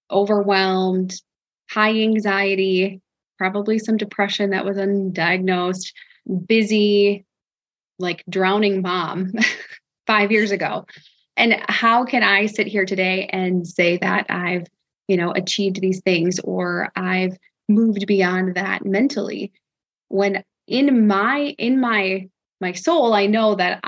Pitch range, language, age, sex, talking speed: 185-210 Hz, English, 20-39, female, 120 wpm